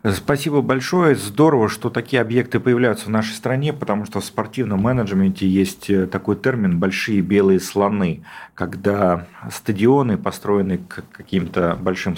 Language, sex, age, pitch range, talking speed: Russian, male, 40-59, 95-110 Hz, 135 wpm